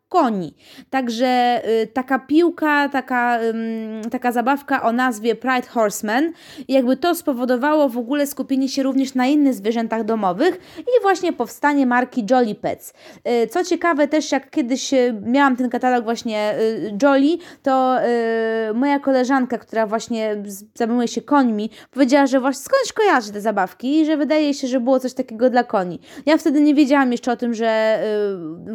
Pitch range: 225-285 Hz